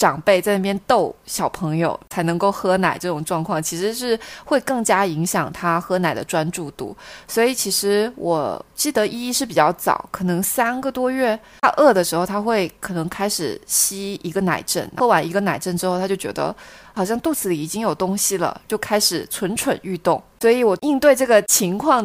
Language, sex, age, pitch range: Chinese, female, 20-39, 175-230 Hz